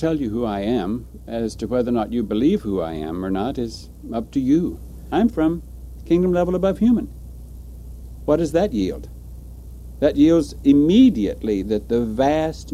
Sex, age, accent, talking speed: male, 60-79, American, 175 wpm